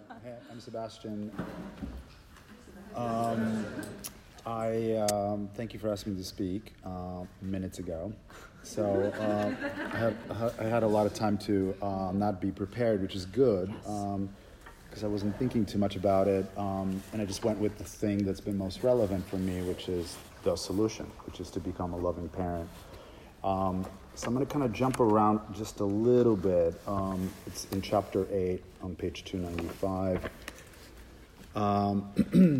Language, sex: English, male